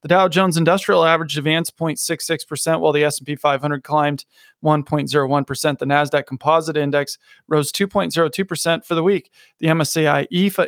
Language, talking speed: English, 140 wpm